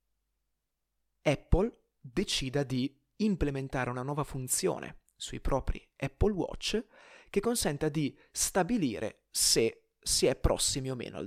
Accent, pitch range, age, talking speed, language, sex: native, 125-195 Hz, 30-49, 115 wpm, Italian, male